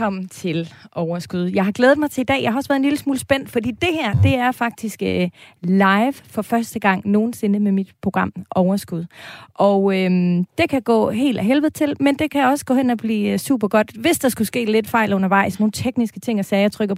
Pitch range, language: 185-230 Hz, Danish